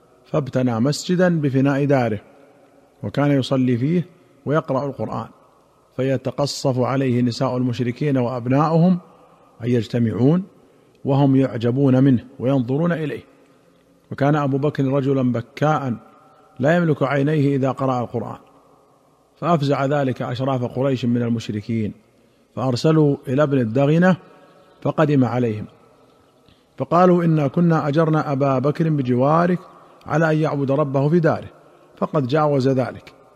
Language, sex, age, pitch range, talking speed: Arabic, male, 50-69, 125-155 Hz, 110 wpm